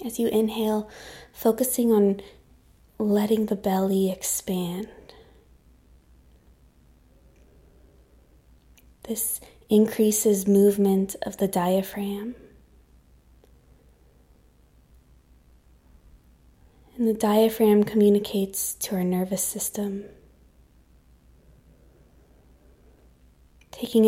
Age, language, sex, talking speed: 20-39, English, female, 60 wpm